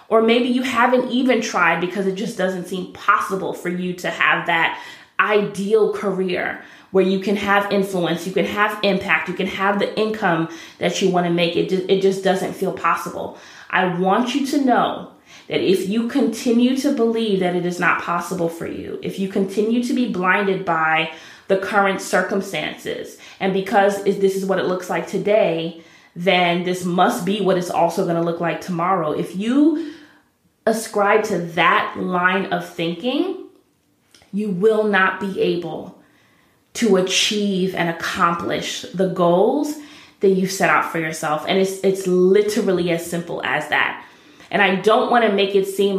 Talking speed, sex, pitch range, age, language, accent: 175 wpm, female, 180-215 Hz, 20-39, English, American